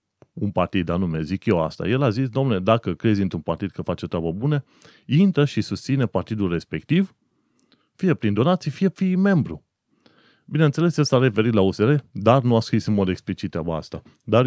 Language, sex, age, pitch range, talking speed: Romanian, male, 30-49, 100-145 Hz, 190 wpm